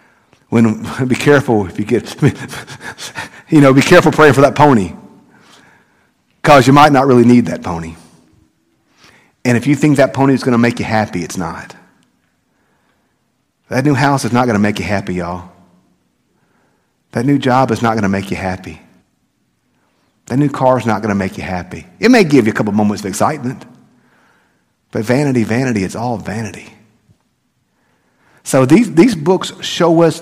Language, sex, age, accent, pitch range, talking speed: English, male, 50-69, American, 105-145 Hz, 175 wpm